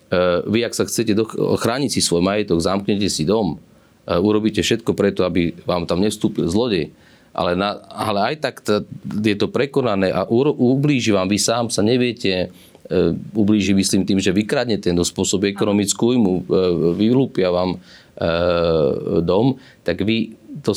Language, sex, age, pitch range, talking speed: Slovak, male, 30-49, 90-105 Hz, 145 wpm